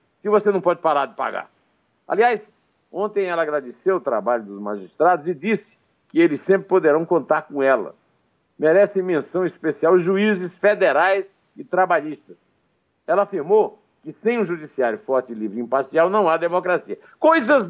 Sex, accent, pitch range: male, Brazilian, 140-210 Hz